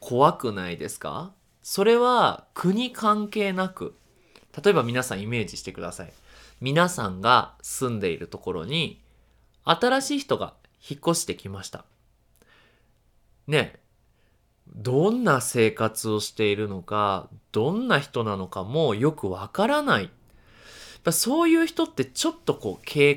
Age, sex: 20-39, male